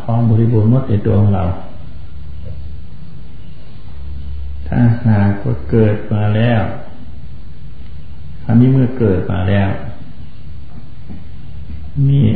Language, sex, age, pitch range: Thai, male, 60-79, 85-115 Hz